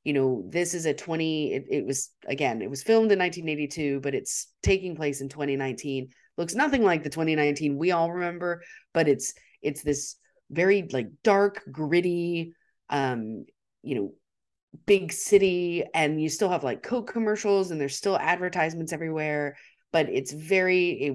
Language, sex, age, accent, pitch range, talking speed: English, female, 30-49, American, 140-175 Hz, 165 wpm